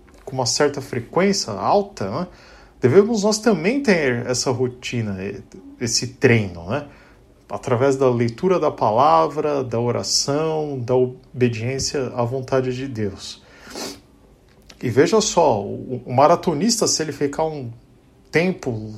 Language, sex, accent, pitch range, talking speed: Portuguese, male, Brazilian, 115-160 Hz, 120 wpm